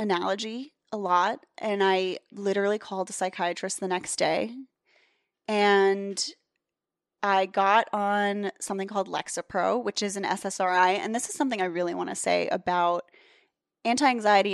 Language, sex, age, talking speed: English, female, 20-39, 140 wpm